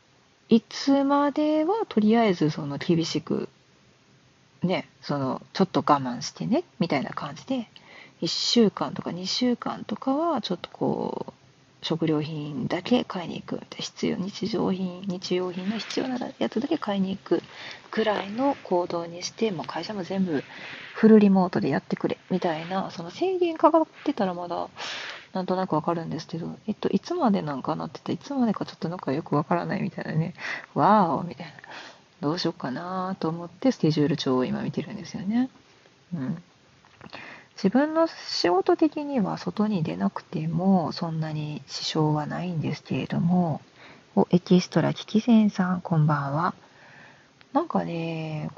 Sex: female